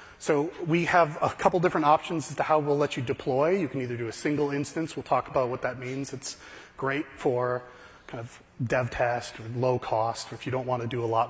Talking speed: 240 wpm